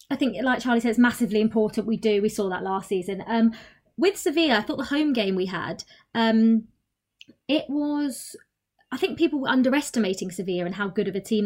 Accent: British